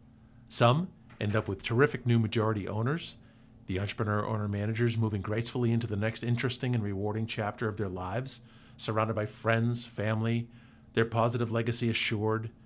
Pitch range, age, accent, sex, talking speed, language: 110-125 Hz, 50-69, American, male, 140 wpm, English